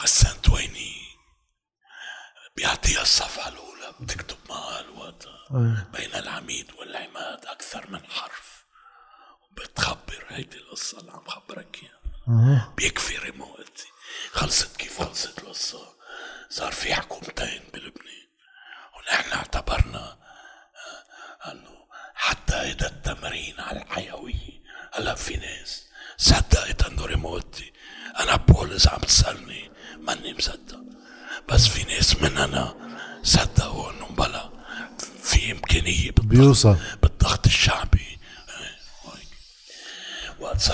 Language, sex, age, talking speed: Arabic, male, 60-79, 95 wpm